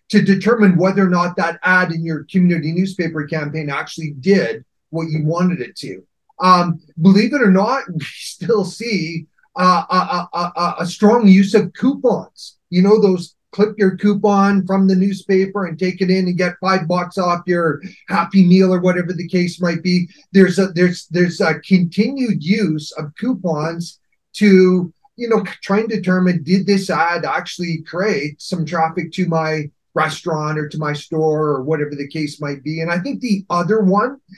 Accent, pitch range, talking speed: American, 165-195 Hz, 180 wpm